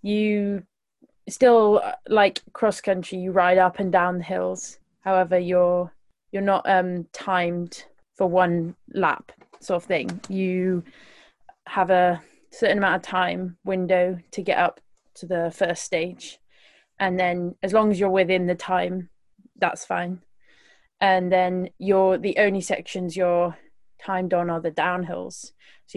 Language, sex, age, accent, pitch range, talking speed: English, female, 20-39, British, 180-195 Hz, 145 wpm